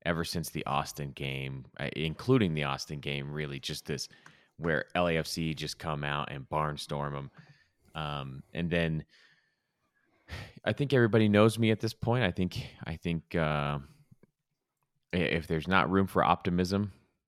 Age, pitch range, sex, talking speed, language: 30-49, 75-95 Hz, male, 145 wpm, English